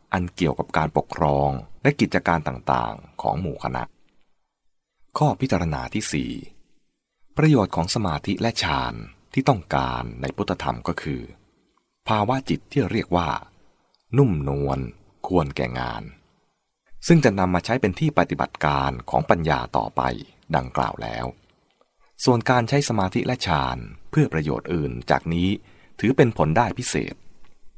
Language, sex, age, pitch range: English, male, 20-39, 70-110 Hz